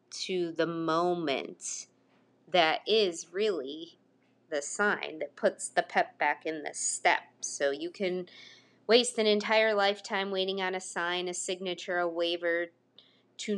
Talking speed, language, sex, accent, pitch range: 140 wpm, English, female, American, 160-210 Hz